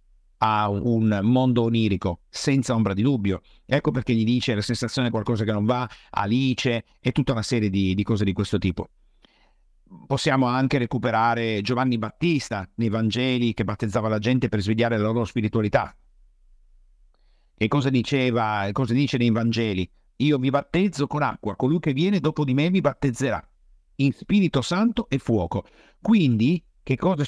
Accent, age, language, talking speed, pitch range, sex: native, 50-69, Italian, 165 wpm, 105-145 Hz, male